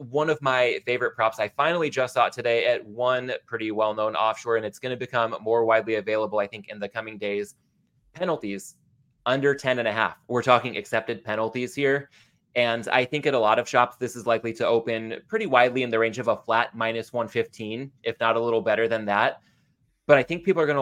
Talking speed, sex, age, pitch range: 220 wpm, male, 20-39, 110-125 Hz